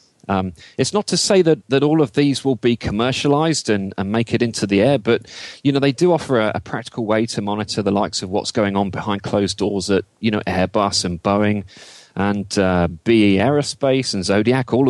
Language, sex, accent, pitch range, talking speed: English, male, British, 100-135 Hz, 220 wpm